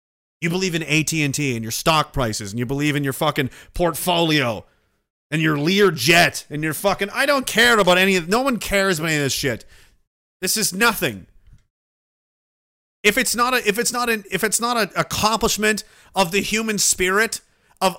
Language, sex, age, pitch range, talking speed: English, male, 30-49, 155-220 Hz, 185 wpm